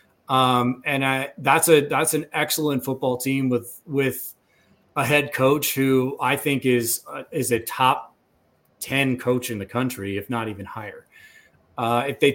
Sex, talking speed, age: male, 170 wpm, 30-49